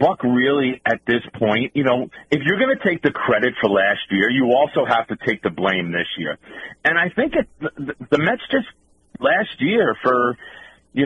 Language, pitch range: English, 115-185 Hz